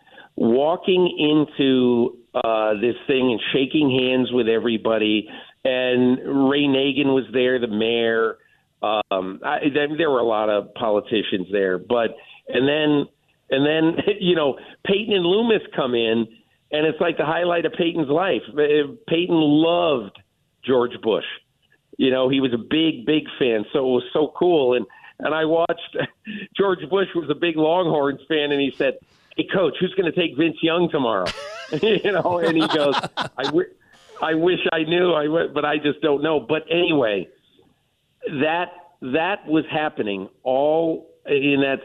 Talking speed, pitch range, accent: 160 wpm, 120-160 Hz, American